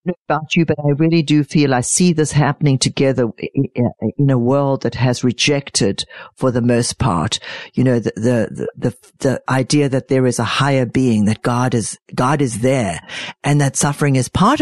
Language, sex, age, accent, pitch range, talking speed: English, female, 50-69, Australian, 125-165 Hz, 190 wpm